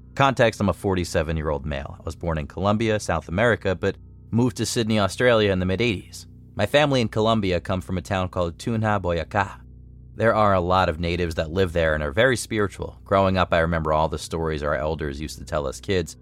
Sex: male